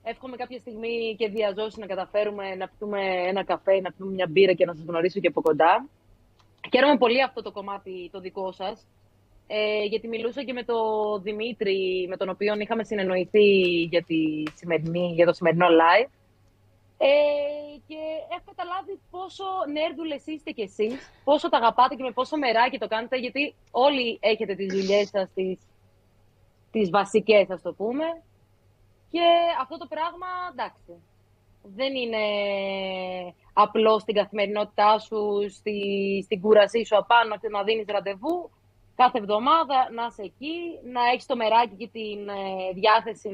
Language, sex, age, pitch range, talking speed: Greek, female, 30-49, 190-250 Hz, 150 wpm